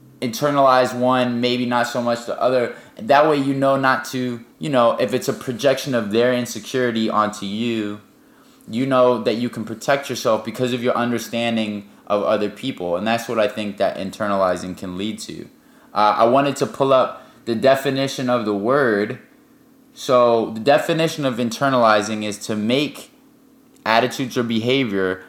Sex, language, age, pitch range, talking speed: male, English, 20-39, 105-130 Hz, 170 wpm